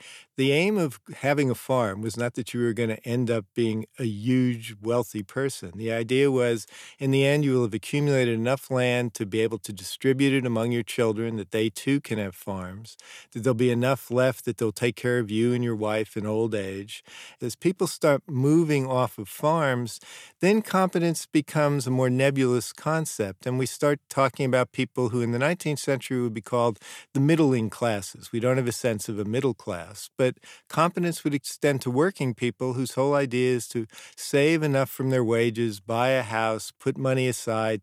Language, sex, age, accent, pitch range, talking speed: English, male, 50-69, American, 115-135 Hz, 200 wpm